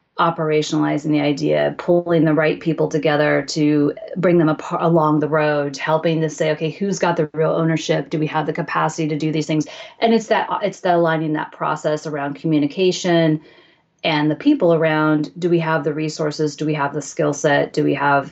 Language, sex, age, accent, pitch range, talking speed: English, female, 30-49, American, 155-185 Hz, 200 wpm